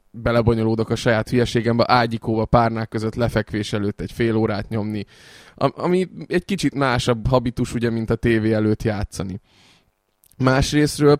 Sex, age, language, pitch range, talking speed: male, 20-39, Hungarian, 110-120 Hz, 135 wpm